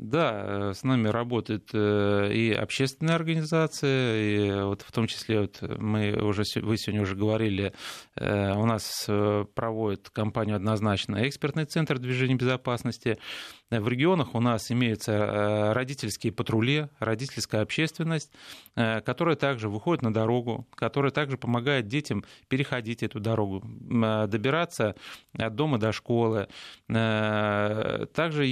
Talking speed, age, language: 115 wpm, 30-49, Russian